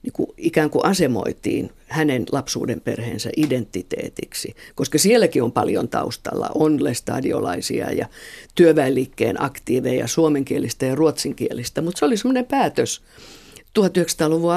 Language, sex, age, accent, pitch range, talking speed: Finnish, female, 50-69, native, 130-170 Hz, 115 wpm